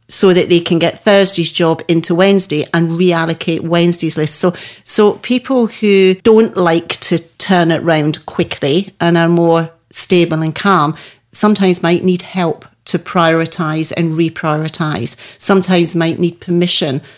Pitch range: 155-180 Hz